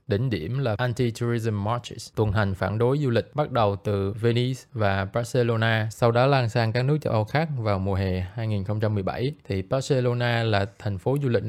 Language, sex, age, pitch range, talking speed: Vietnamese, male, 20-39, 105-125 Hz, 200 wpm